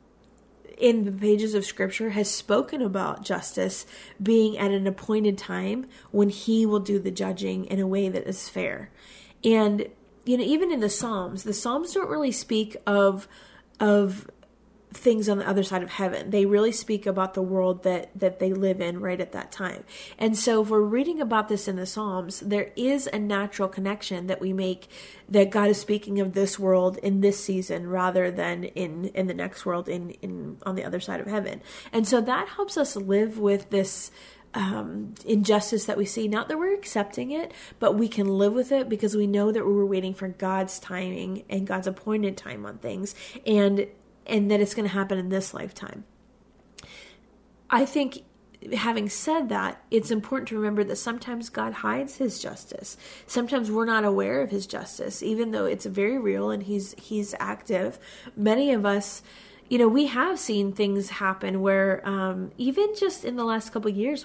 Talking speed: 190 wpm